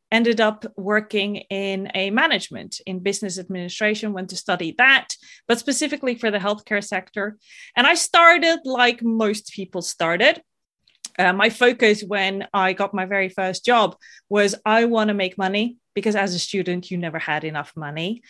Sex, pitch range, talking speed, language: female, 195-240 Hz, 165 wpm, English